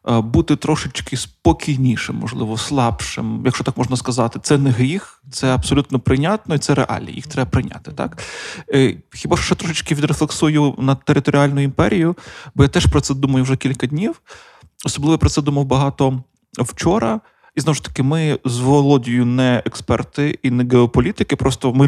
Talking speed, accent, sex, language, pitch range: 160 wpm, native, male, Ukrainian, 125-150 Hz